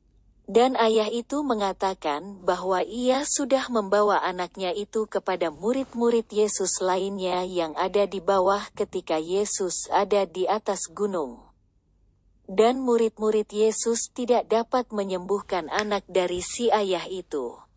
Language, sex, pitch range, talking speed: Indonesian, female, 185-230 Hz, 120 wpm